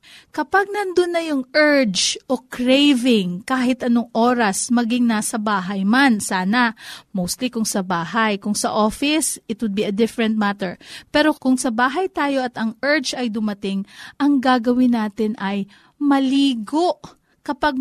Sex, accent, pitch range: female, native, 225-290 Hz